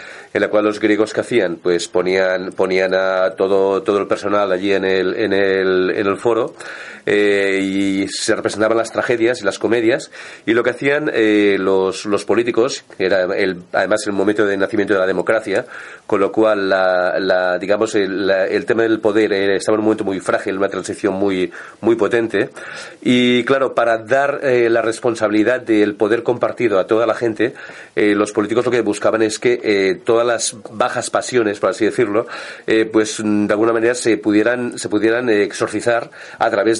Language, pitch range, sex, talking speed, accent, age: Spanish, 100-120 Hz, male, 190 wpm, Spanish, 40-59